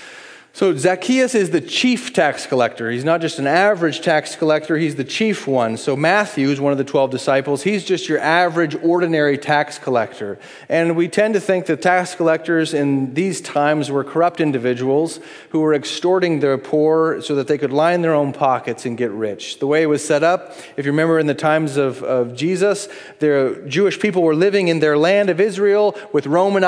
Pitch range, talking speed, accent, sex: 150-195 Hz, 200 wpm, American, male